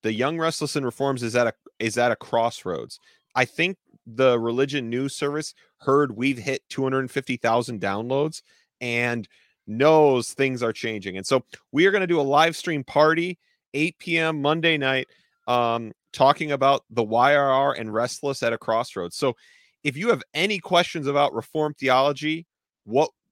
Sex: male